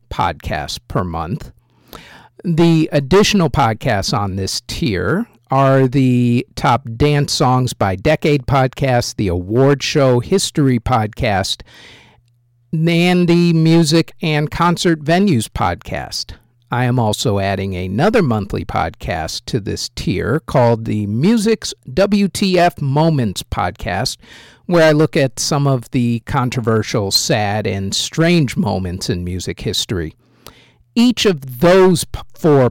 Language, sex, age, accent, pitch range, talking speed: English, male, 50-69, American, 115-160 Hz, 115 wpm